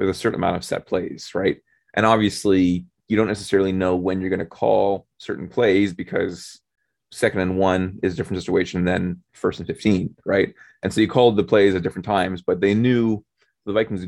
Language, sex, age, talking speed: English, male, 20-39, 205 wpm